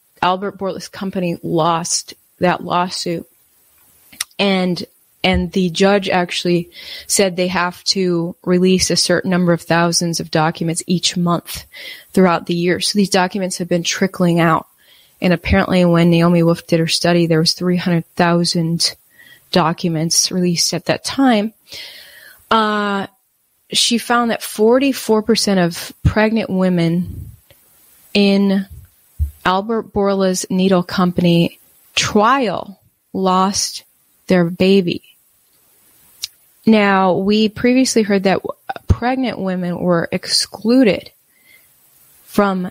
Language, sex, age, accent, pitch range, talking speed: English, female, 20-39, American, 170-195 Hz, 110 wpm